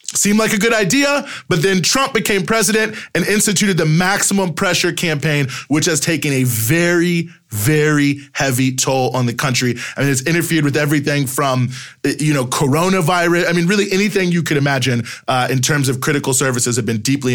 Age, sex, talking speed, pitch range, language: 20-39, male, 185 wpm, 145-200 Hz, English